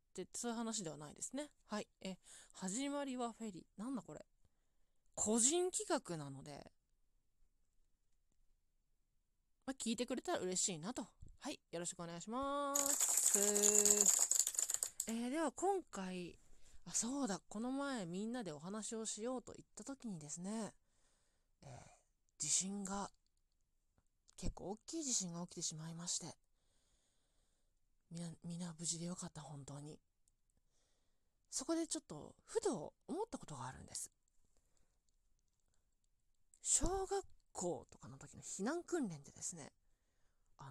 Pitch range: 155-255 Hz